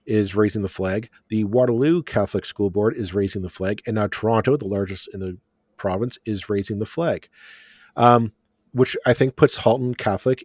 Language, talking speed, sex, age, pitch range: English, 185 wpm, male, 40-59, 105-125 Hz